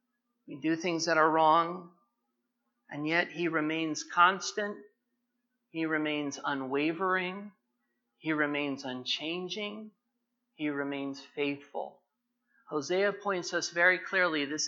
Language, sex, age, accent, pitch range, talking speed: English, male, 40-59, American, 150-205 Hz, 105 wpm